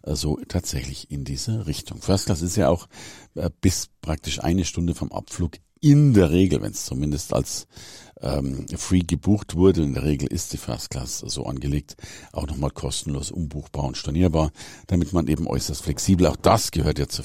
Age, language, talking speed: 50-69, German, 185 wpm